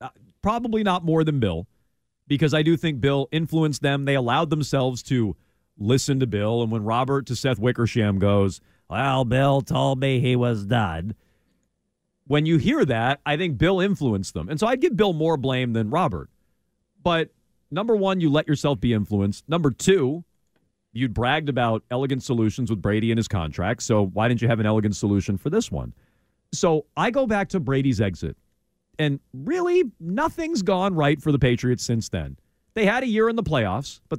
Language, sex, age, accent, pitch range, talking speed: English, male, 40-59, American, 110-160 Hz, 190 wpm